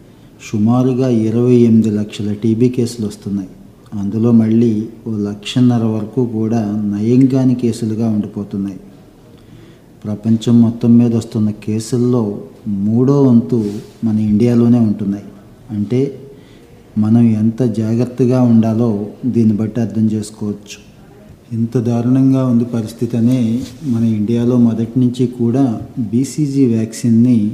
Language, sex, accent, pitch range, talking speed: Telugu, male, native, 110-120 Hz, 105 wpm